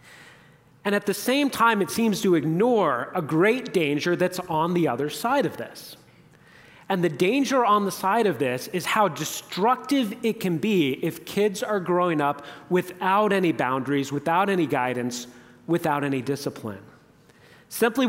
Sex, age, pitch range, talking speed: male, 30-49, 160-230 Hz, 160 wpm